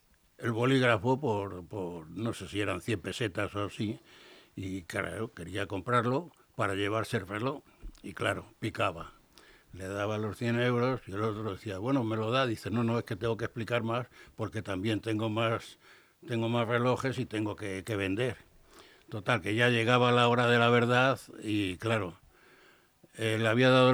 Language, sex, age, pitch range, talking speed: Spanish, male, 60-79, 110-135 Hz, 180 wpm